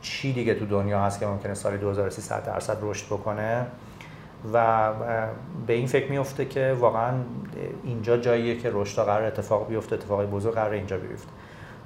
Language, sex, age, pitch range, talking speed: Persian, male, 40-59, 110-130 Hz, 160 wpm